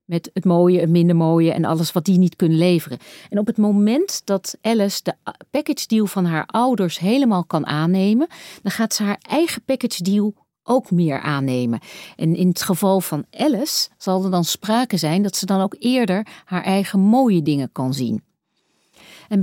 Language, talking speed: Dutch, 190 wpm